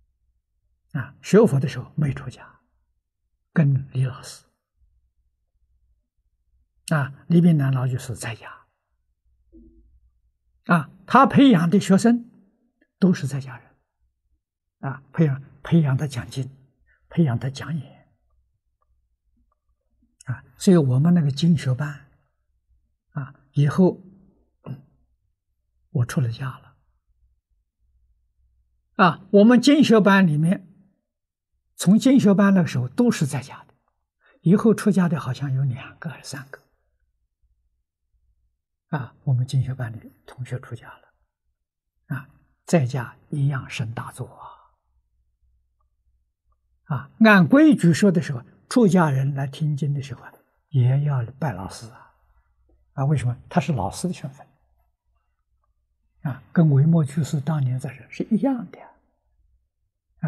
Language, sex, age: Chinese, male, 60-79